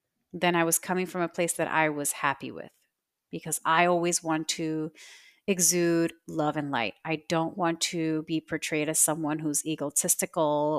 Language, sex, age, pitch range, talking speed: English, female, 30-49, 155-180 Hz, 170 wpm